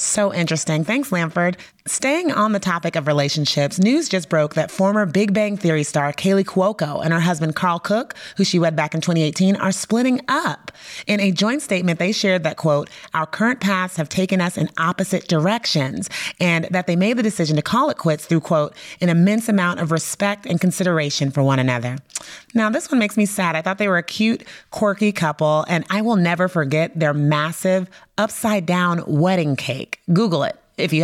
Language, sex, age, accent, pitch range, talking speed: English, female, 30-49, American, 160-205 Hz, 195 wpm